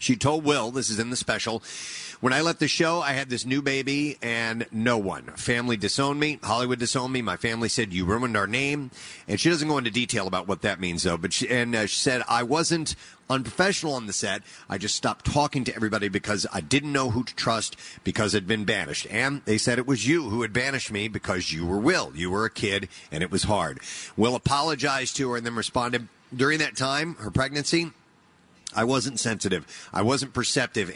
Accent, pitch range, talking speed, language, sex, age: American, 105-135 Hz, 225 wpm, English, male, 40-59